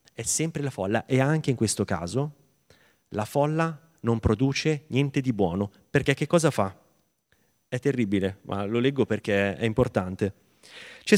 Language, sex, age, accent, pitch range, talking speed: Italian, male, 30-49, native, 110-150 Hz, 155 wpm